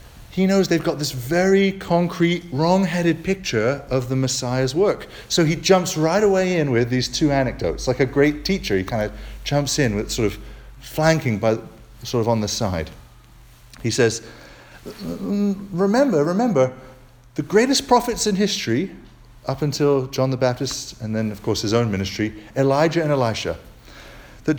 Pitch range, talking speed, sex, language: 115-165 Hz, 165 wpm, male, English